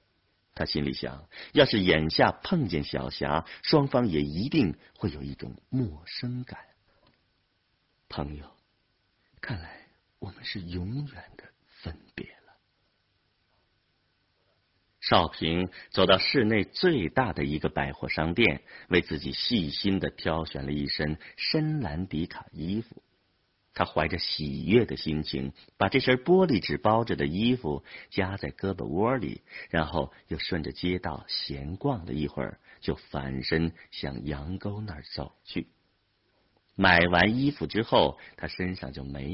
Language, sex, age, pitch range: Chinese, male, 50-69, 75-105 Hz